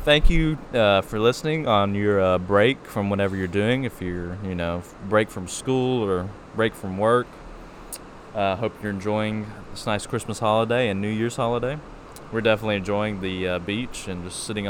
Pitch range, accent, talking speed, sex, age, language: 100-125 Hz, American, 185 wpm, male, 20-39, English